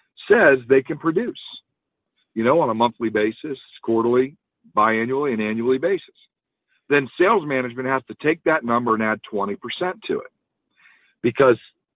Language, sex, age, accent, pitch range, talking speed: English, male, 50-69, American, 115-165 Hz, 145 wpm